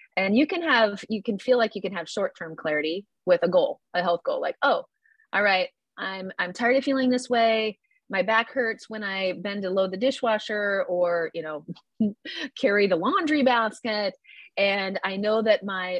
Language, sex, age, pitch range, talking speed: English, female, 30-49, 185-245 Hz, 195 wpm